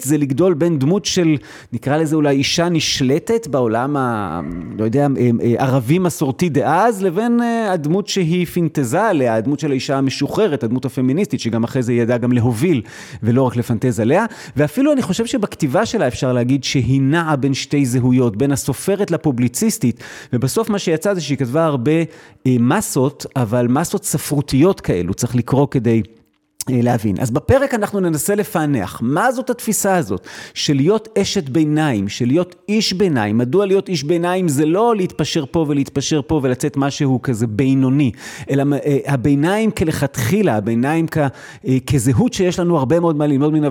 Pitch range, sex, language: 125-175 Hz, male, Hebrew